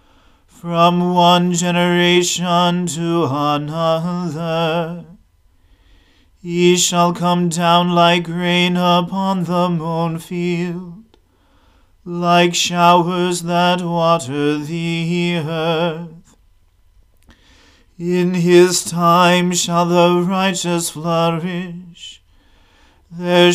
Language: English